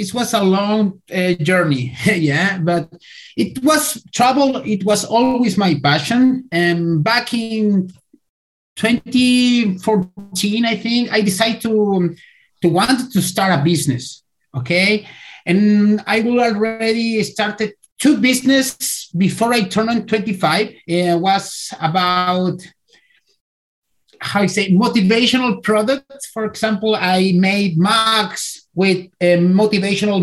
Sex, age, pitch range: male, 30-49, 180-225 Hz